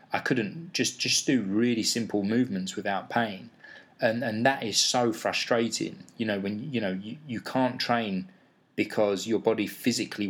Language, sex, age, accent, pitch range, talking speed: English, male, 20-39, British, 100-115 Hz, 170 wpm